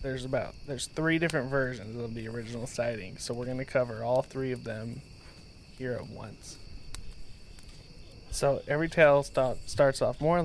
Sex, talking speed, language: male, 165 wpm, English